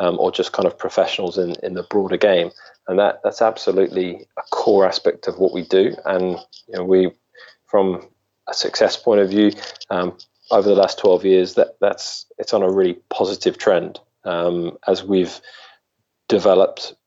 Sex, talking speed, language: male, 175 wpm, English